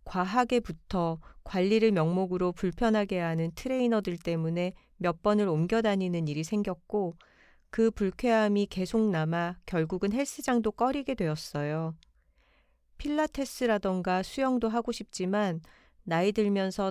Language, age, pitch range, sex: Korean, 40-59, 165-220 Hz, female